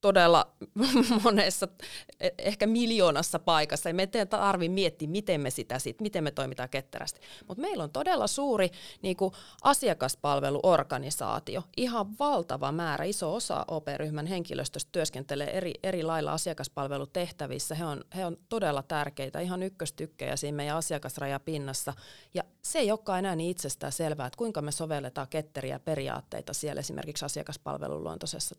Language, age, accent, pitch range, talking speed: Finnish, 30-49, native, 150-195 Hz, 135 wpm